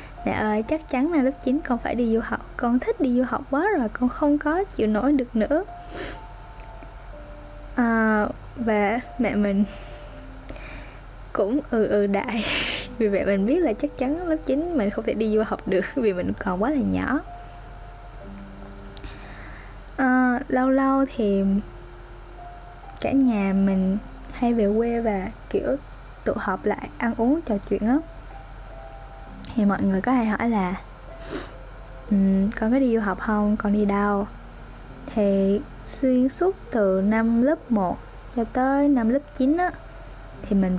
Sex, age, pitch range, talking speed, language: female, 10-29, 200-270 Hz, 160 wpm, Vietnamese